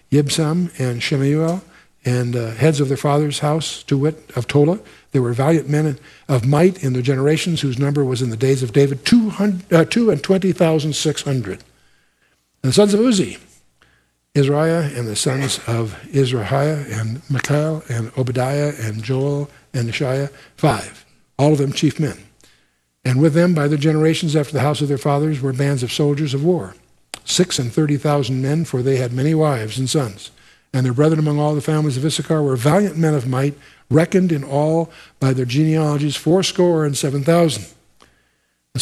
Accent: American